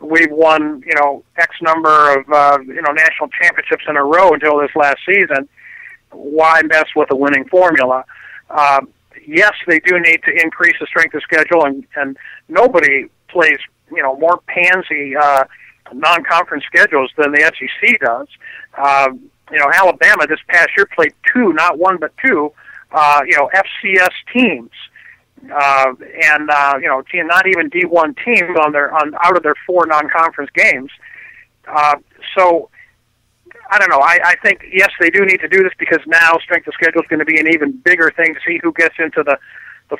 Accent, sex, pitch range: American, male, 145-180 Hz